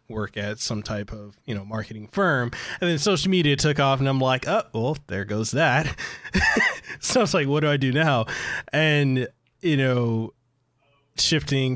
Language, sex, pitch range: English, male, 110-145 Hz